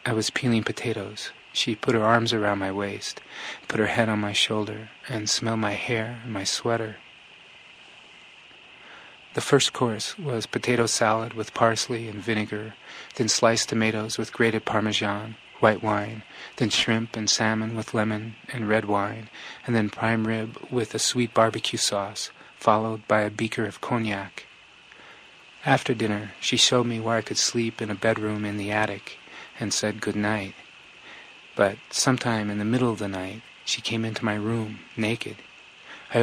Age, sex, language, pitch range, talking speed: 30-49, male, English, 105-115 Hz, 165 wpm